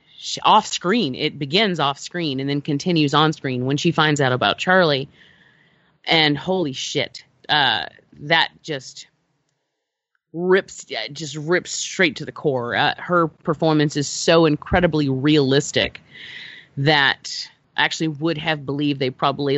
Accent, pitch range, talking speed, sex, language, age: American, 145-190 Hz, 140 wpm, female, English, 30-49